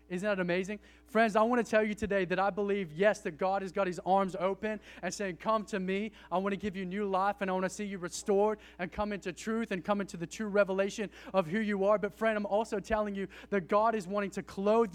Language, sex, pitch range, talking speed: English, male, 185-225 Hz, 265 wpm